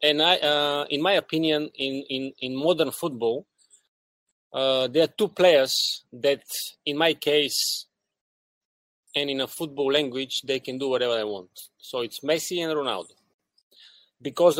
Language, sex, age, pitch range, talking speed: English, male, 30-49, 130-160 Hz, 150 wpm